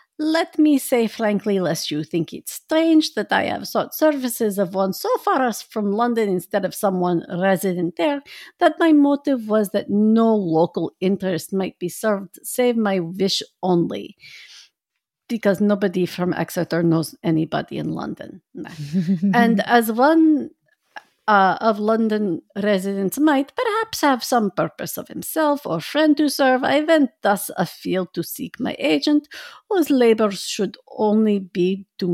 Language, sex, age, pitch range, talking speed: English, female, 50-69, 190-275 Hz, 150 wpm